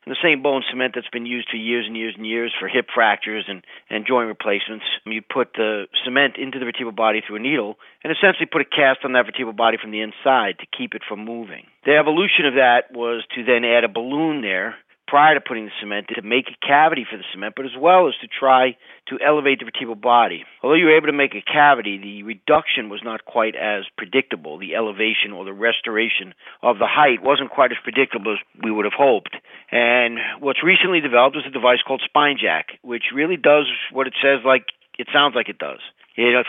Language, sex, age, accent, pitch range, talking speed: English, male, 40-59, American, 110-135 Hz, 225 wpm